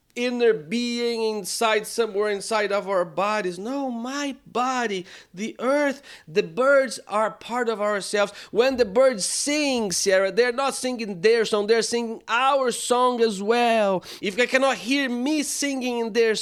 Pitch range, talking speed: 145-230 Hz, 155 wpm